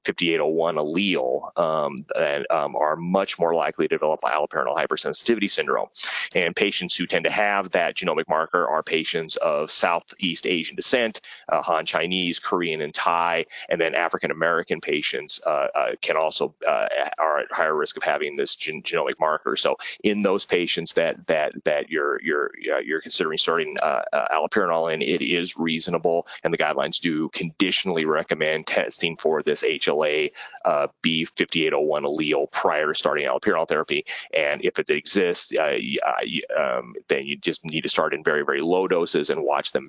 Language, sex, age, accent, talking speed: Italian, male, 30-49, American, 170 wpm